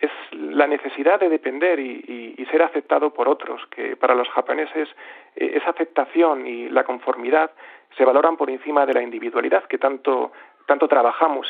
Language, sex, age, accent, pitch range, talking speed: Spanish, male, 40-59, Spanish, 135-170 Hz, 170 wpm